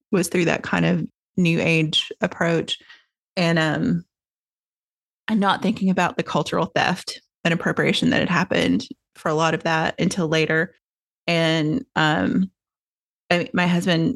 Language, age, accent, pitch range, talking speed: English, 30-49, American, 165-205 Hz, 140 wpm